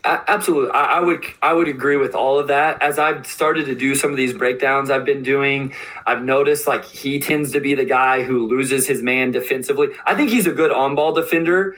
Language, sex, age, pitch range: English, male, 20-39, 125-150 Hz